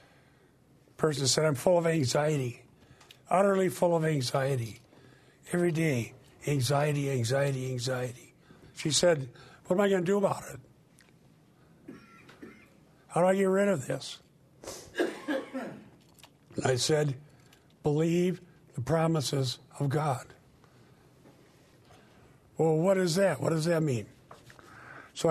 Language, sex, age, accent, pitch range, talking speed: English, male, 50-69, American, 130-165 Hz, 115 wpm